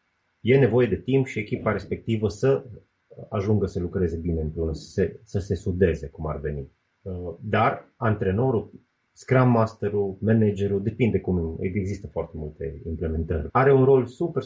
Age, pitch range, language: 30-49, 90-120 Hz, Romanian